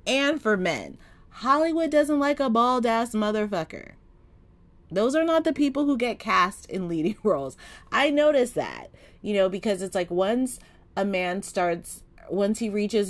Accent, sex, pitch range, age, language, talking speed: American, female, 165-225 Hz, 30-49, English, 160 wpm